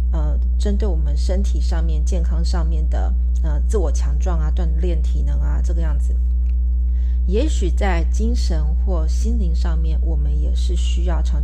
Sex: female